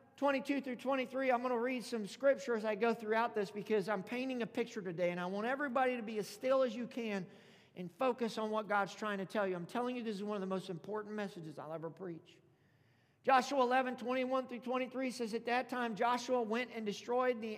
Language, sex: English, male